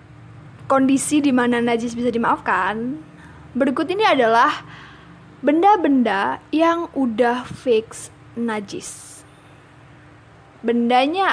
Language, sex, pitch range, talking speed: Malay, female, 210-270 Hz, 80 wpm